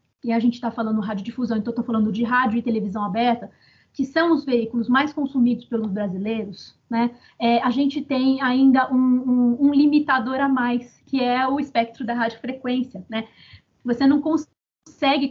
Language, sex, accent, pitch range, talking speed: Portuguese, female, Brazilian, 235-275 Hz, 180 wpm